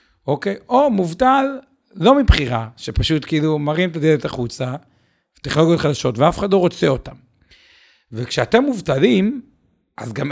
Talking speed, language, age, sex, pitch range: 135 wpm, Hebrew, 50-69, male, 130-185 Hz